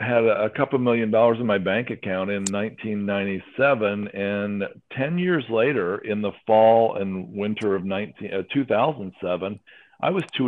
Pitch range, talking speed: 100-120 Hz, 150 wpm